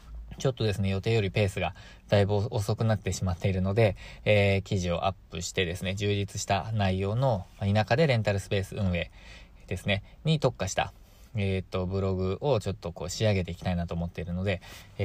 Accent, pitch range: native, 90-110 Hz